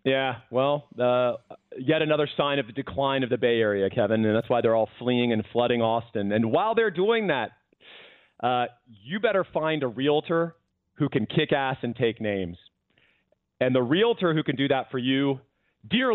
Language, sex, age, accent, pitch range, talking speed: English, male, 40-59, American, 115-150 Hz, 190 wpm